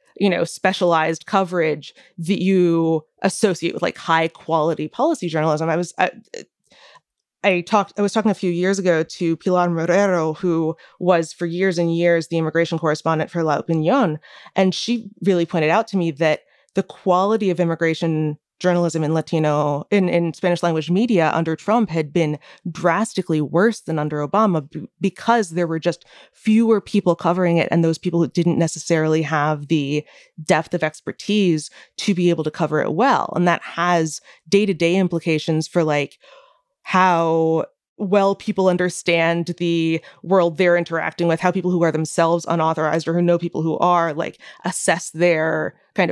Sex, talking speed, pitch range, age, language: female, 170 wpm, 165-190 Hz, 20-39, English